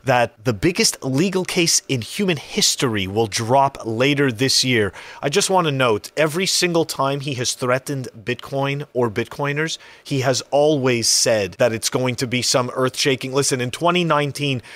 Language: English